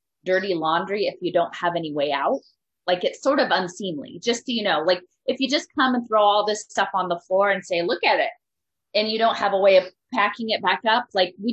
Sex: female